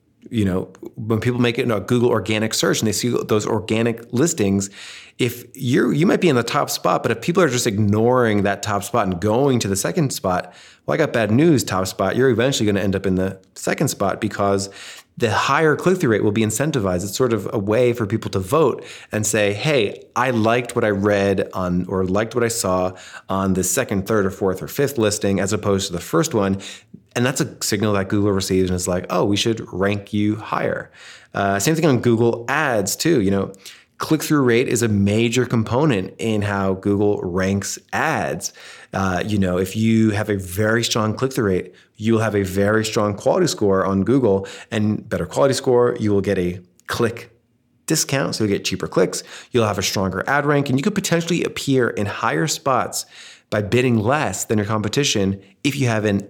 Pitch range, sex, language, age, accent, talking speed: 100-120 Hz, male, English, 30-49, American, 210 wpm